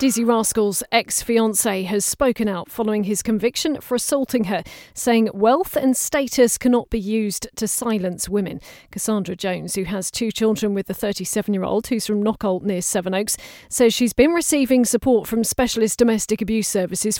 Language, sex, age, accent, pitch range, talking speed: English, female, 40-59, British, 200-235 Hz, 160 wpm